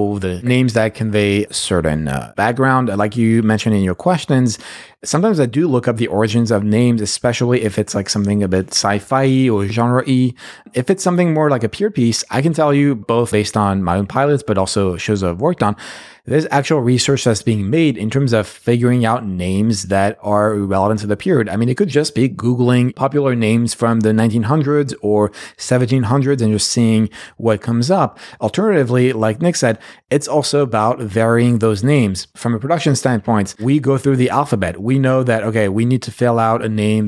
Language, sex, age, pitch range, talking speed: English, male, 30-49, 105-130 Hz, 200 wpm